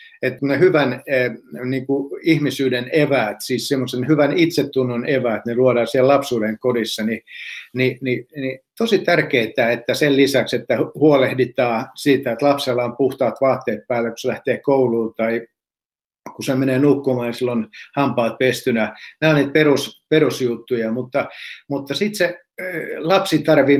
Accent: native